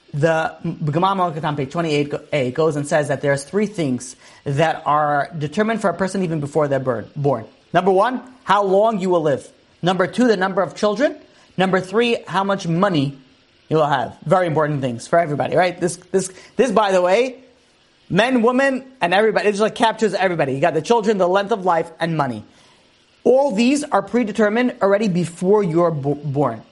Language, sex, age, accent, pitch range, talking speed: English, male, 30-49, American, 155-220 Hz, 185 wpm